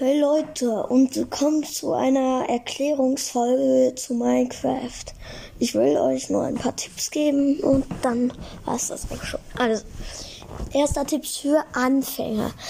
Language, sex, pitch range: German, female, 245-280 Hz